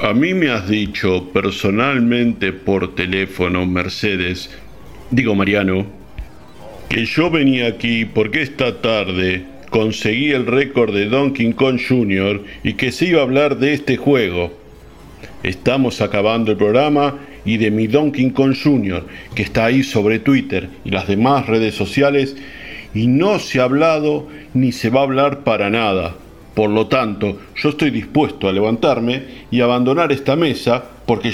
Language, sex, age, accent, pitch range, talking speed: Spanish, male, 50-69, Argentinian, 100-130 Hz, 150 wpm